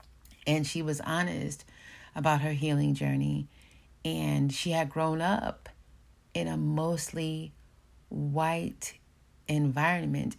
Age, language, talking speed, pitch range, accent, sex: 40-59, English, 105 wpm, 140-175 Hz, American, female